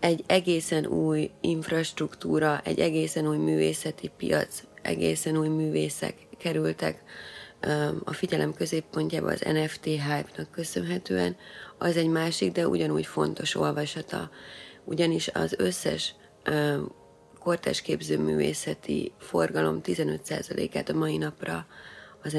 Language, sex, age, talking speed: Hungarian, female, 30-49, 100 wpm